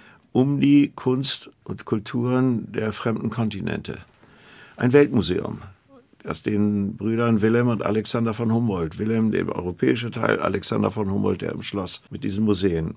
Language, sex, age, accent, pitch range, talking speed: German, male, 60-79, German, 110-130 Hz, 145 wpm